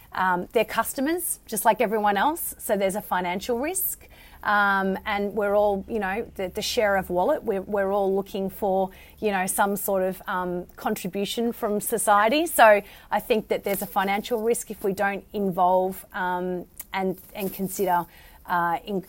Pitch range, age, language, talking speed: 190-230 Hz, 30-49, English, 175 wpm